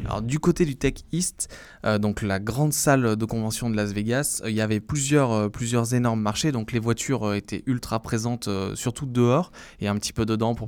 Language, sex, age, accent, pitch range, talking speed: French, male, 20-39, French, 105-125 Hz, 230 wpm